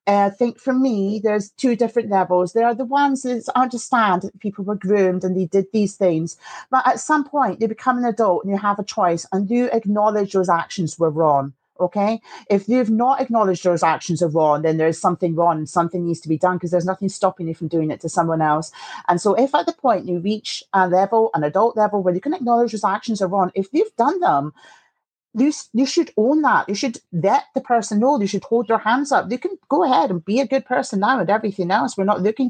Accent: British